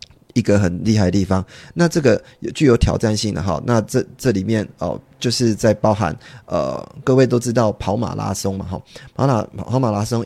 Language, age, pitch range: Chinese, 20-39, 100-120 Hz